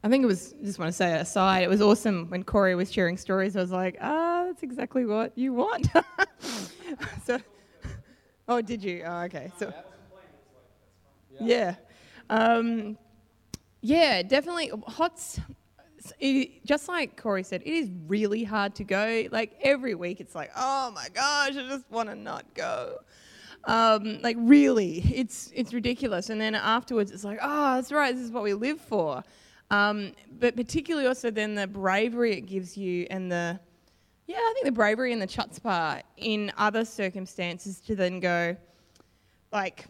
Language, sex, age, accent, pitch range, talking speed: English, female, 20-39, Australian, 180-245 Hz, 170 wpm